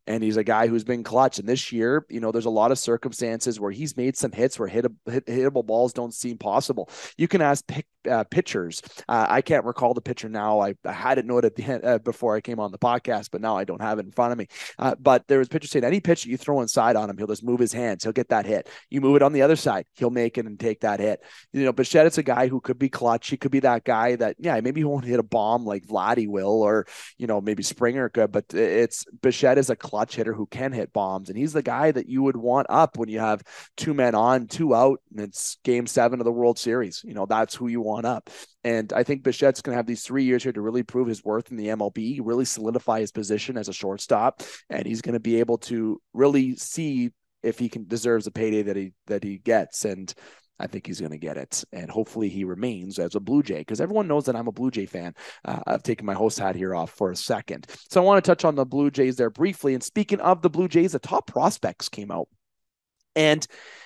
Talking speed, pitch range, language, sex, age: 265 wpm, 110-135 Hz, English, male, 30-49